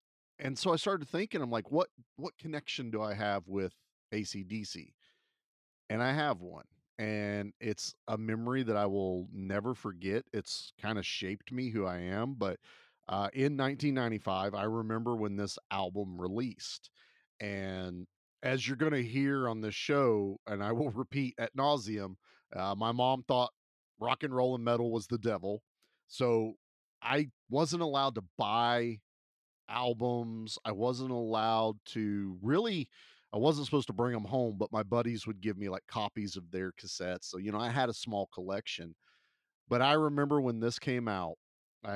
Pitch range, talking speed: 100-120 Hz, 170 wpm